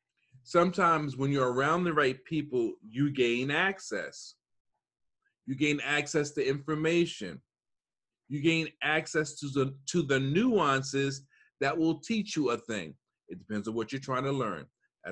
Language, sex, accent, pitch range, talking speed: English, male, American, 125-165 Hz, 150 wpm